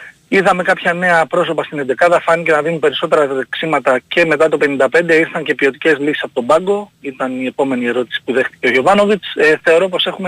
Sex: male